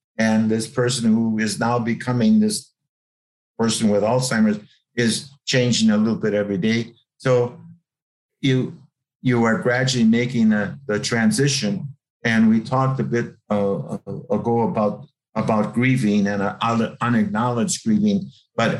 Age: 50-69